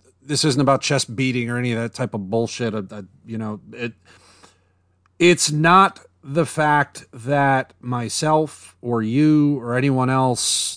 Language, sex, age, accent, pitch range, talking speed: English, male, 40-59, American, 105-150 Hz, 145 wpm